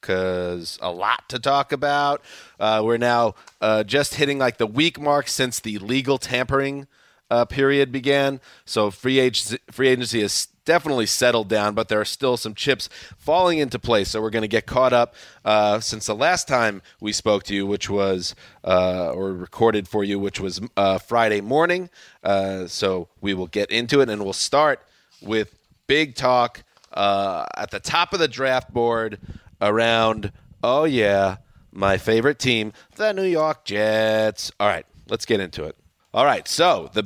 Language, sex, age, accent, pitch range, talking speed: English, male, 30-49, American, 105-140 Hz, 175 wpm